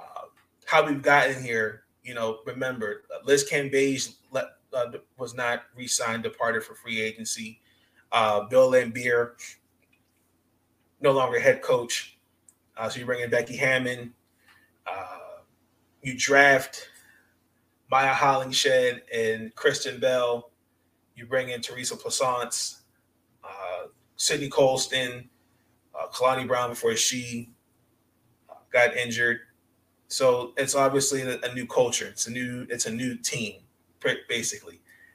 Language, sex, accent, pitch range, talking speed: English, male, American, 115-140 Hz, 115 wpm